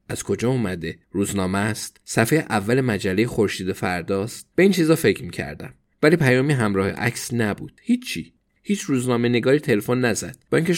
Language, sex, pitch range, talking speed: Persian, male, 105-135 Hz, 150 wpm